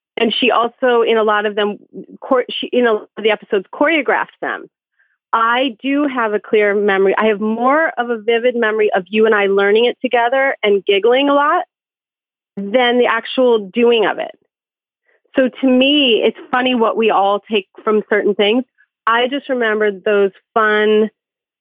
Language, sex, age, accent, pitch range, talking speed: English, female, 30-49, American, 205-245 Hz, 170 wpm